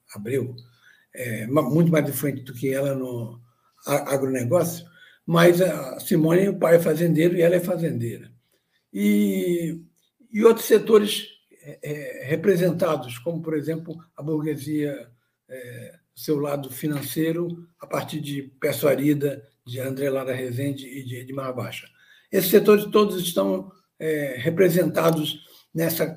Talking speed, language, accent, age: 120 wpm, Portuguese, Brazilian, 60-79